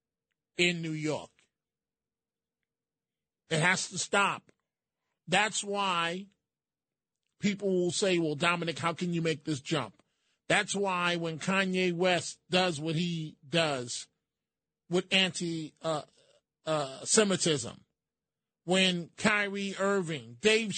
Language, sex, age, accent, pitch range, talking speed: English, male, 40-59, American, 160-195 Hz, 105 wpm